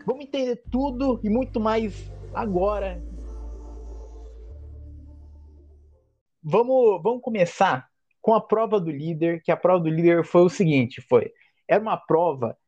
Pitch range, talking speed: 145-220 Hz, 130 wpm